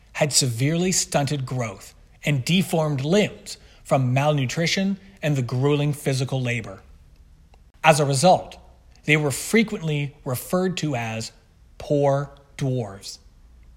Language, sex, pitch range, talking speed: English, male, 120-165 Hz, 110 wpm